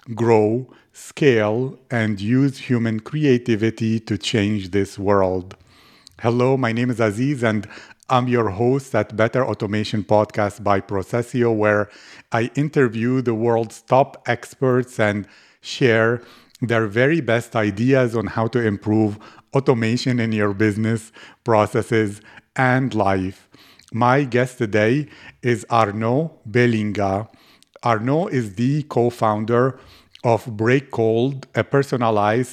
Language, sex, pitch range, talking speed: English, male, 110-125 Hz, 120 wpm